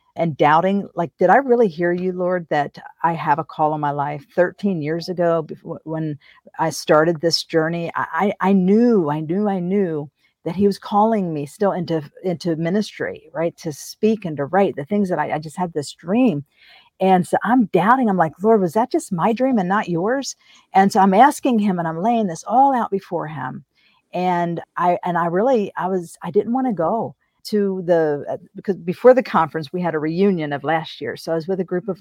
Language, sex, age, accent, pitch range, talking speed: English, female, 50-69, American, 155-195 Hz, 220 wpm